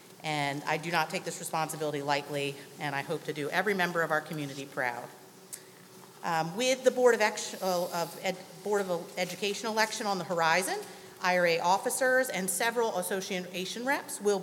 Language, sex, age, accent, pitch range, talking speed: English, female, 40-59, American, 165-205 Hz, 175 wpm